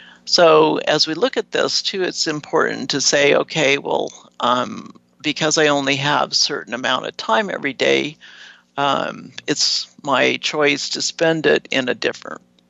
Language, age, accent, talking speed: English, 60-79, American, 160 wpm